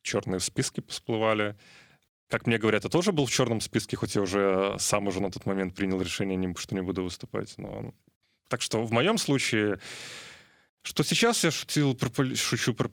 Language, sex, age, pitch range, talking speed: Russian, male, 20-39, 95-120 Hz, 170 wpm